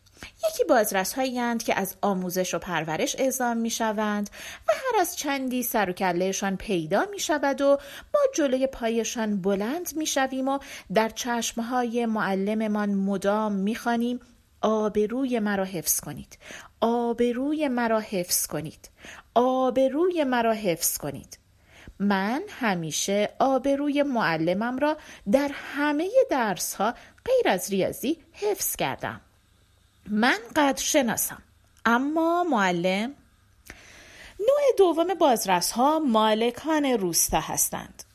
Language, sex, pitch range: Persian, female, 195-275 Hz